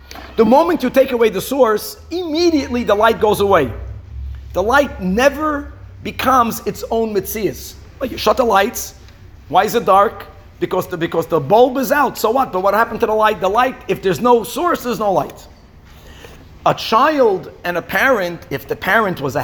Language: English